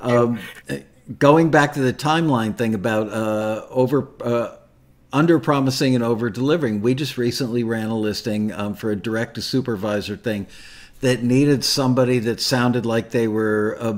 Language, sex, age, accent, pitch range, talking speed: English, male, 50-69, American, 110-130 Hz, 145 wpm